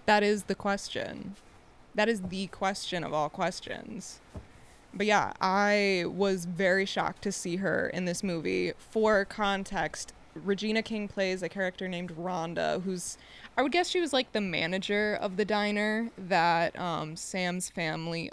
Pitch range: 180-230 Hz